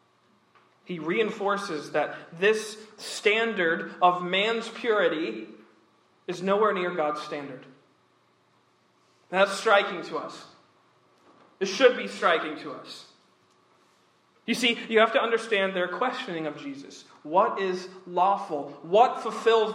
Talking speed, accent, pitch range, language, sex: 115 wpm, American, 170-225 Hz, English, male